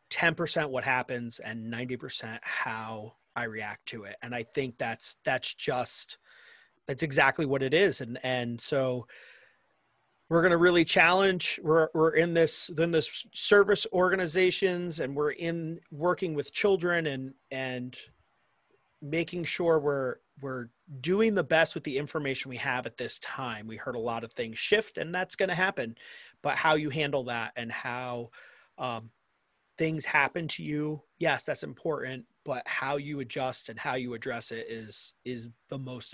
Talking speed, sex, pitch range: 165 wpm, male, 130-165 Hz